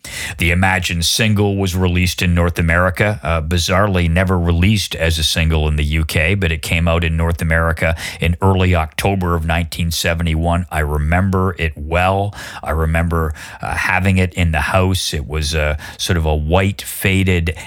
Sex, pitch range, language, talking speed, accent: male, 80-95 Hz, English, 170 wpm, American